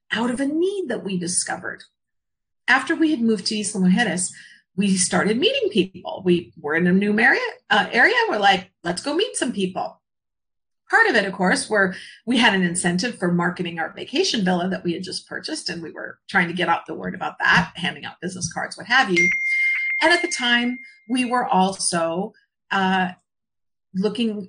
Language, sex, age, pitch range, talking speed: English, female, 40-59, 180-270 Hz, 195 wpm